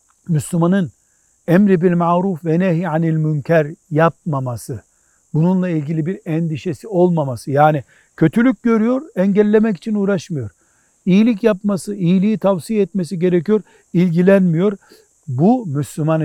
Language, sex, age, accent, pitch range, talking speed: Turkish, male, 60-79, native, 150-190 Hz, 105 wpm